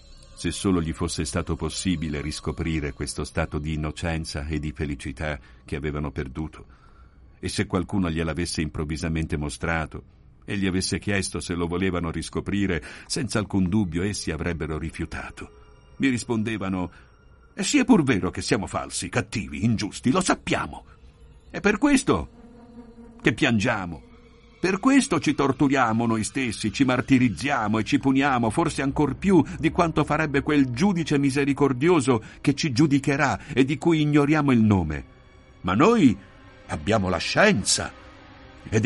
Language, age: Italian, 60-79